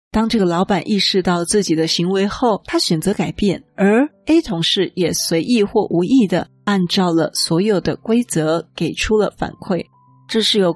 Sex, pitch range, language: female, 170-205 Hz, Chinese